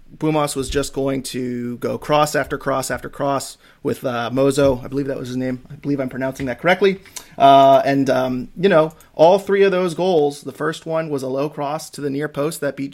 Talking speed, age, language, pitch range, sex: 225 wpm, 30-49, English, 135-155 Hz, male